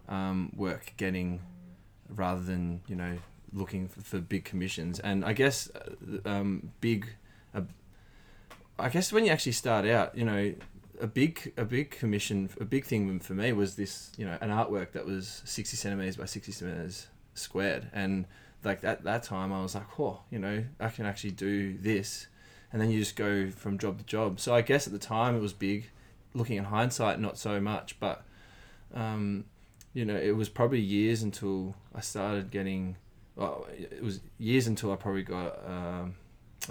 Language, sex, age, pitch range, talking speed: English, male, 20-39, 95-110 Hz, 185 wpm